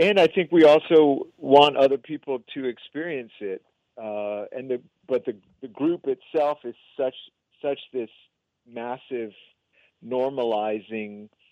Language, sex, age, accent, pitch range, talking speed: English, male, 40-59, American, 105-130 Hz, 130 wpm